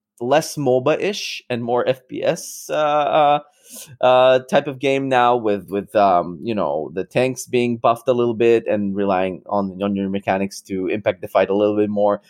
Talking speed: 180 wpm